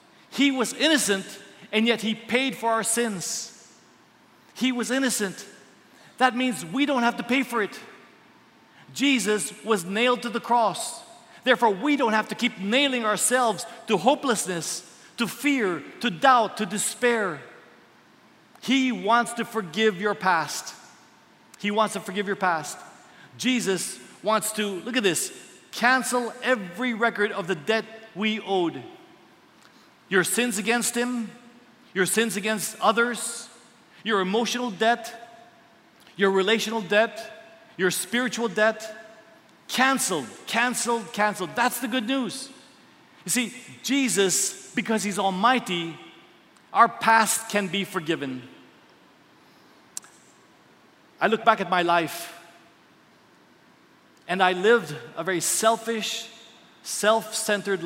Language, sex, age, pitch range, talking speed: English, male, 40-59, 200-245 Hz, 120 wpm